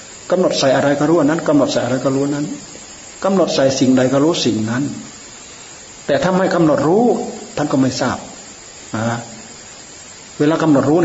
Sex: male